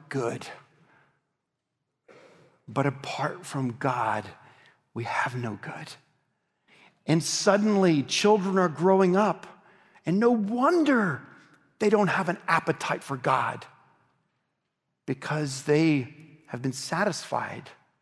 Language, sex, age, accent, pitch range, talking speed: English, male, 40-59, American, 130-160 Hz, 100 wpm